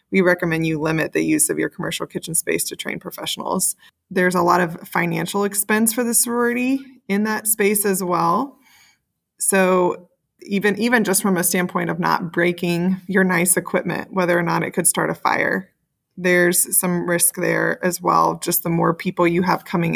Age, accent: 20-39, American